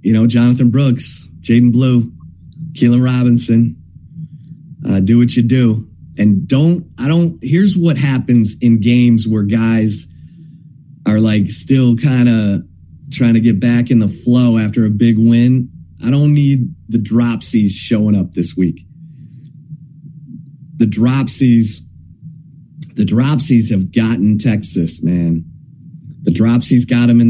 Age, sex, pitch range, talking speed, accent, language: 30-49, male, 105-140 Hz, 135 wpm, American, English